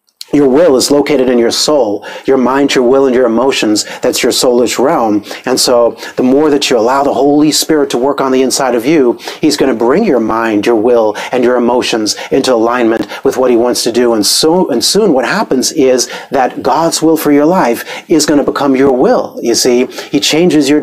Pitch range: 120-140 Hz